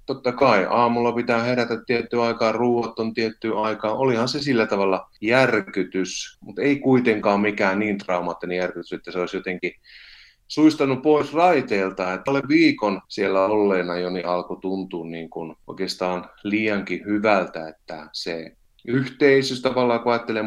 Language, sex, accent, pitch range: Finnish, male, native, 95-130 Hz